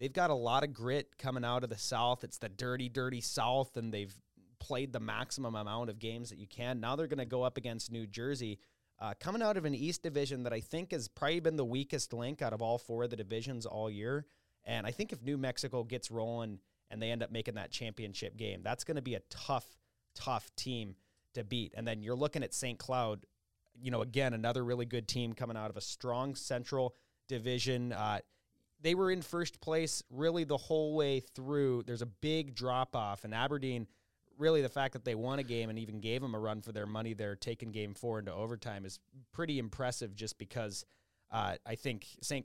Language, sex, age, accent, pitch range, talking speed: English, male, 30-49, American, 110-135 Hz, 220 wpm